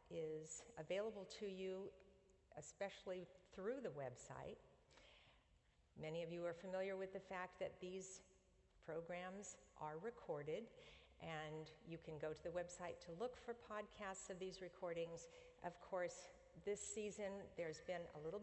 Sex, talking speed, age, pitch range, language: female, 140 wpm, 50-69, 155-185 Hz, English